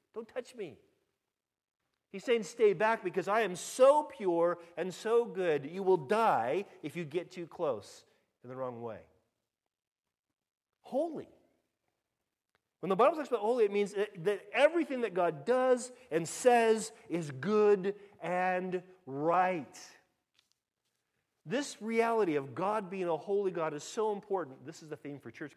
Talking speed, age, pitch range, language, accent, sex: 150 wpm, 40-59, 135-205 Hz, English, American, male